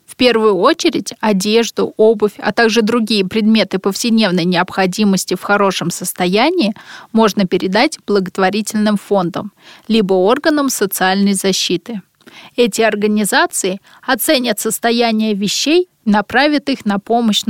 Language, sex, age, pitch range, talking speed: Russian, female, 20-39, 205-255 Hz, 110 wpm